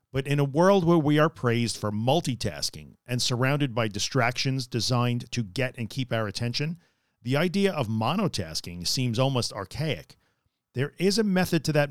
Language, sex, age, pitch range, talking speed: English, male, 40-59, 110-150 Hz, 170 wpm